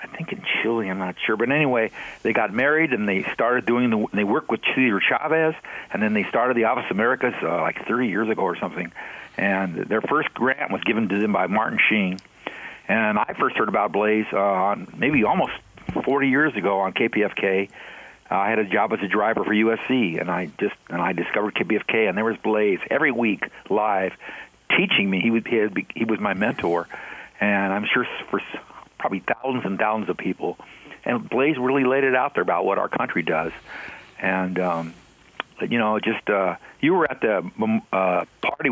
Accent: American